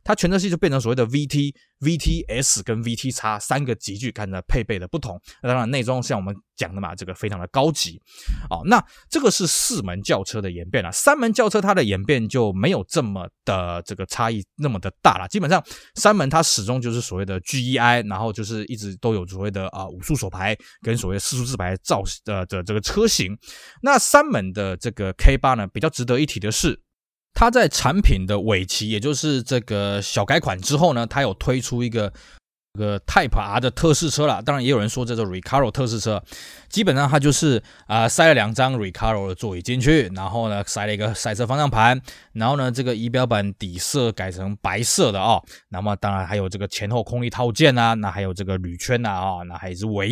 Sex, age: male, 20-39